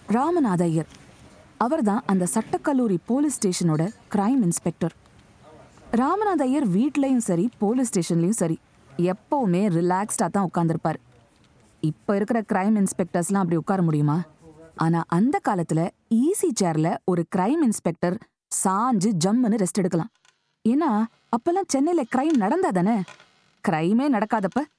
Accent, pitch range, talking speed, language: native, 175-255 Hz, 110 wpm, Tamil